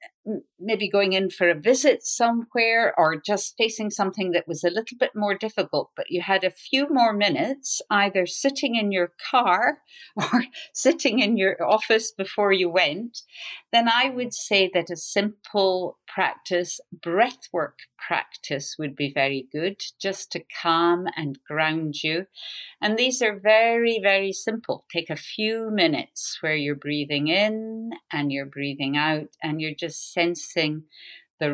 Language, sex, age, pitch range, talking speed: English, female, 50-69, 150-215 Hz, 155 wpm